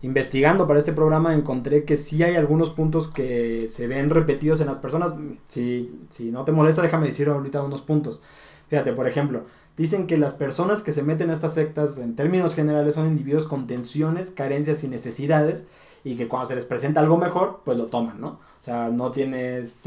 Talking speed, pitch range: 200 wpm, 135-160 Hz